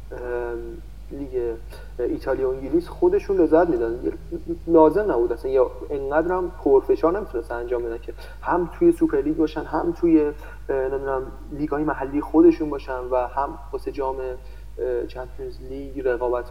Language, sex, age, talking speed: Persian, male, 30-49, 125 wpm